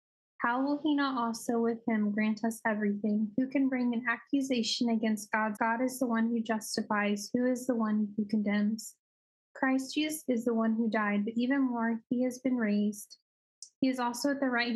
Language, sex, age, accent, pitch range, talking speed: English, female, 10-29, American, 220-255 Hz, 200 wpm